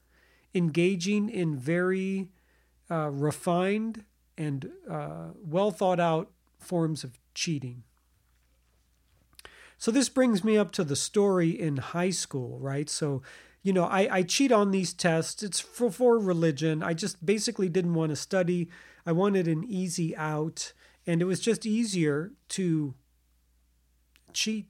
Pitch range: 155-205 Hz